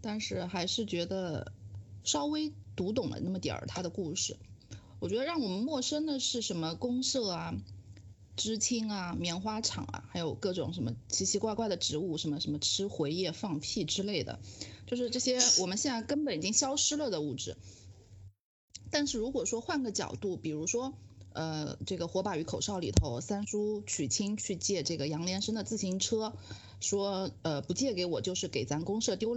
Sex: female